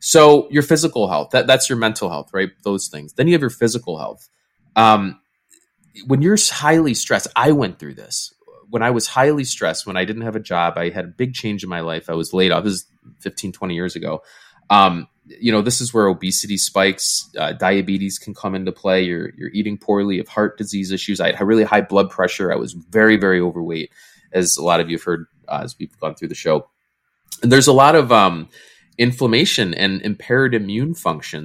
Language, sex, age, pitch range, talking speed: English, male, 20-39, 90-120 Hz, 220 wpm